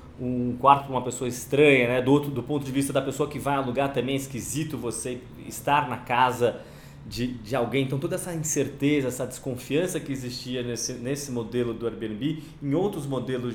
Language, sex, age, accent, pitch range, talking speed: Portuguese, male, 20-39, Brazilian, 120-145 Hz, 190 wpm